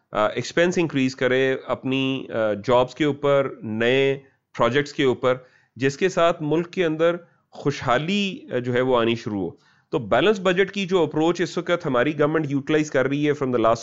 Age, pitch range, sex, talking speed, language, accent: 30-49, 130-170 Hz, male, 180 wpm, English, Indian